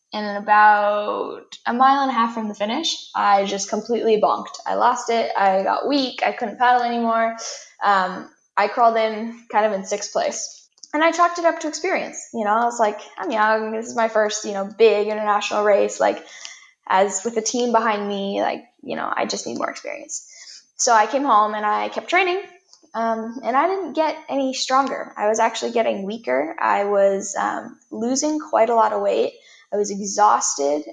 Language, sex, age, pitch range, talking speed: English, female, 10-29, 205-250 Hz, 200 wpm